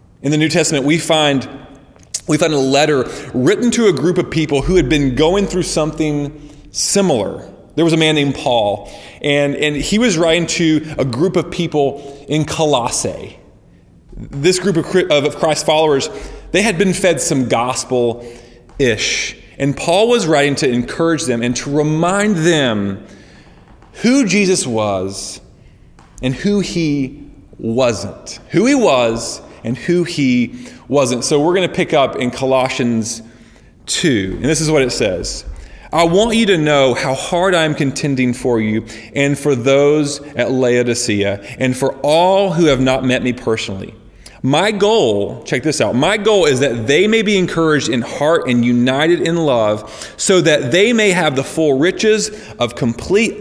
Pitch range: 125-175 Hz